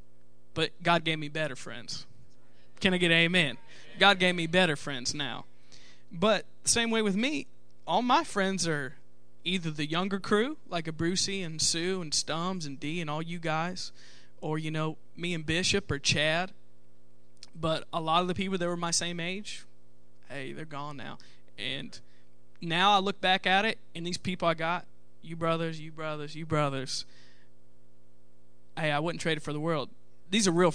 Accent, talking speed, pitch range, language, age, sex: American, 185 wpm, 125-180 Hz, English, 20-39, male